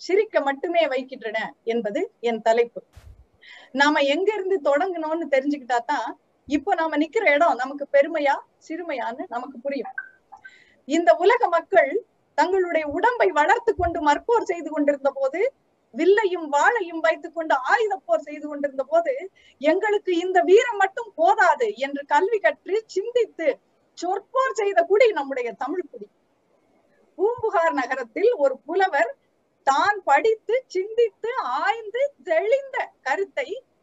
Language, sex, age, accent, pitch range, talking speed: Tamil, female, 30-49, native, 285-400 Hz, 100 wpm